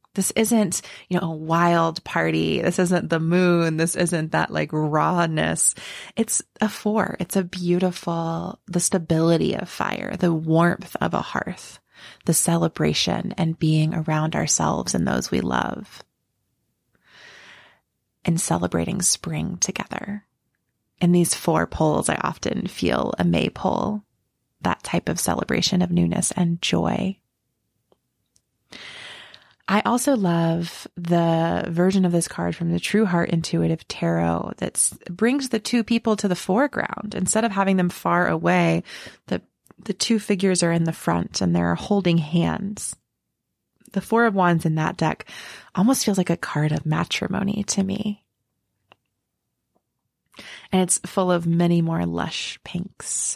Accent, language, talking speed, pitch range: American, English, 140 wpm, 165-200 Hz